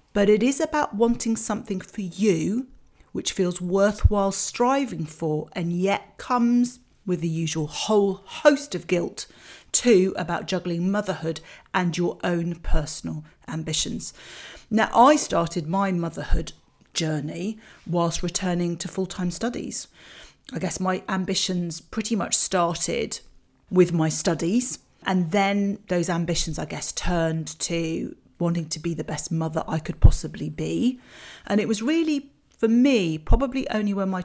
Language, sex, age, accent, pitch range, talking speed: English, female, 40-59, British, 170-215 Hz, 140 wpm